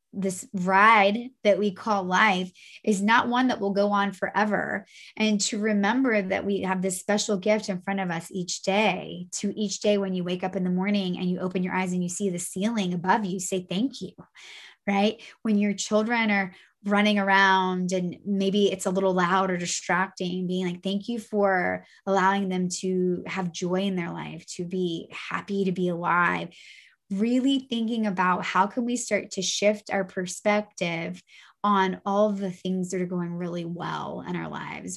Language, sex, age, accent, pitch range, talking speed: English, female, 20-39, American, 185-210 Hz, 190 wpm